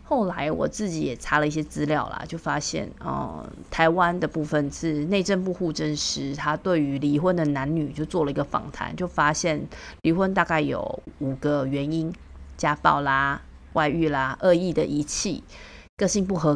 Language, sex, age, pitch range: Chinese, female, 30-49, 150-185 Hz